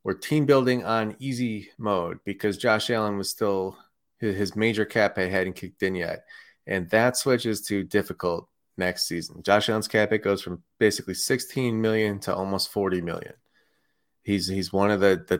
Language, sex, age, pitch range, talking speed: English, male, 30-49, 95-115 Hz, 175 wpm